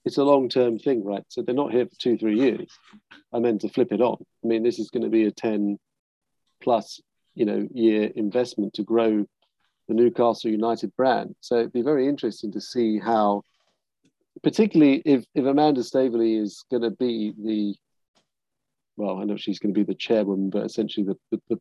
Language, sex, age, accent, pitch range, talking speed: English, male, 40-59, British, 110-130 Hz, 195 wpm